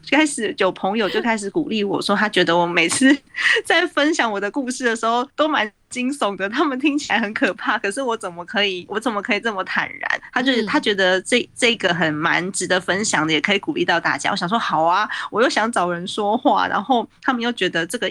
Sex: female